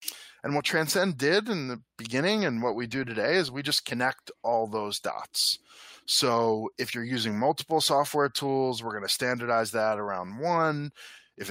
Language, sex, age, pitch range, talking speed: English, male, 20-39, 105-125 Hz, 175 wpm